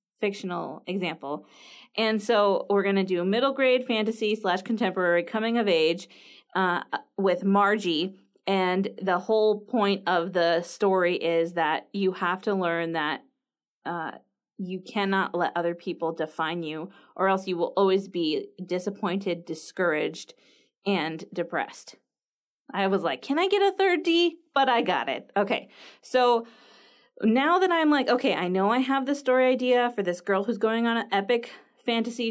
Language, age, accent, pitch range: English, 20-39, American, 180-250 Hz